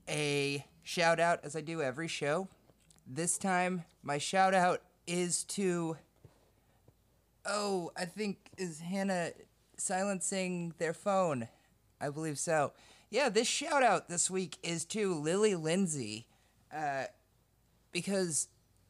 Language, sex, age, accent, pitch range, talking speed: English, male, 30-49, American, 140-190 Hz, 120 wpm